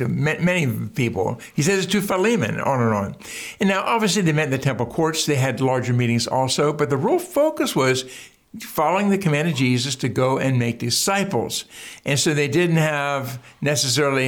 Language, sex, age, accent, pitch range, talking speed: English, male, 60-79, American, 130-185 Hz, 190 wpm